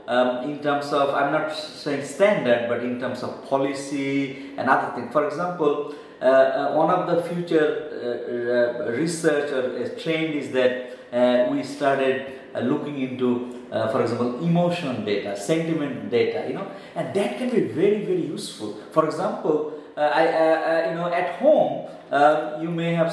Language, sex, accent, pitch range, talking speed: English, male, Indian, 135-175 Hz, 175 wpm